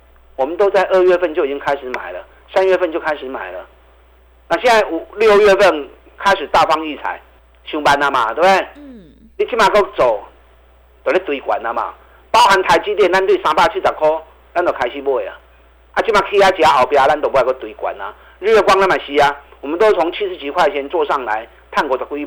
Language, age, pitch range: Chinese, 50-69, 135-215 Hz